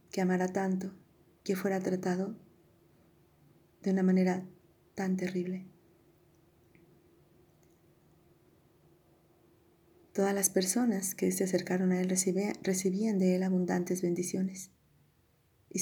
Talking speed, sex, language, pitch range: 95 wpm, female, Spanish, 180-195 Hz